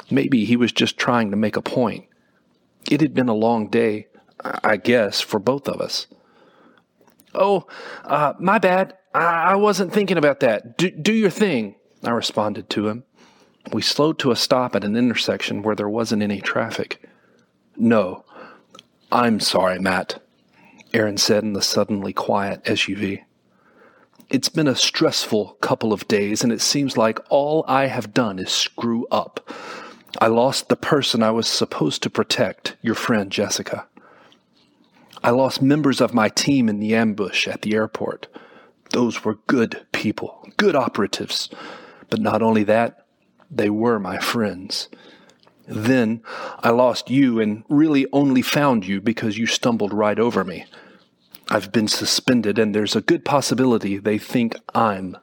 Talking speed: 155 wpm